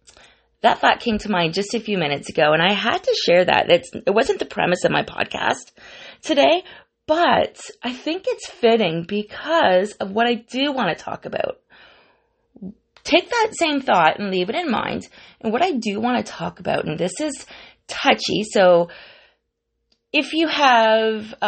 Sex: female